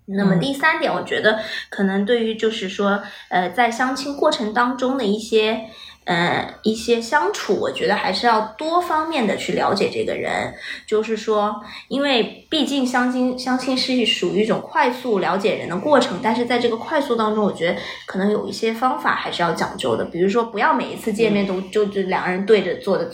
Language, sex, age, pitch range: Chinese, female, 20-39, 205-255 Hz